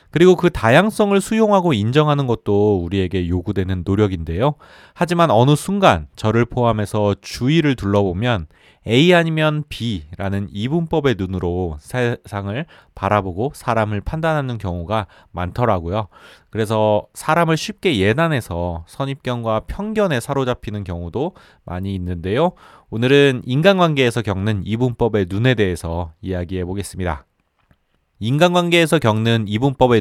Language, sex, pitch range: Korean, male, 95-145 Hz